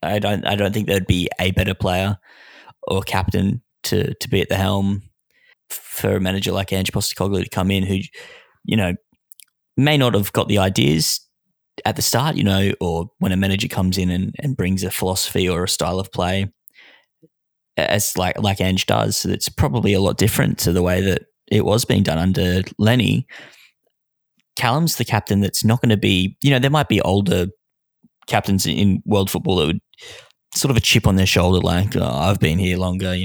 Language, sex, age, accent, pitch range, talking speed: English, male, 10-29, Australian, 95-105 Hz, 205 wpm